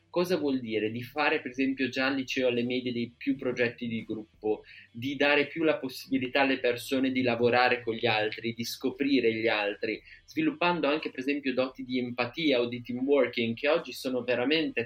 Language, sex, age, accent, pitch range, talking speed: Italian, male, 20-39, native, 115-135 Hz, 195 wpm